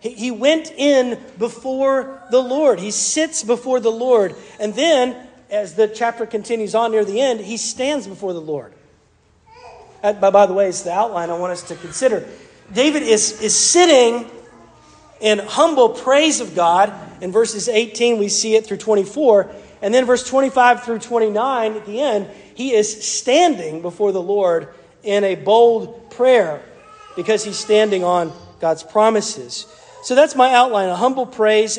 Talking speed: 160 wpm